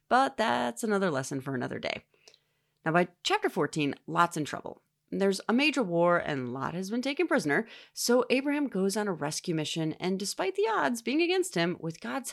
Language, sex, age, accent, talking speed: English, female, 30-49, American, 195 wpm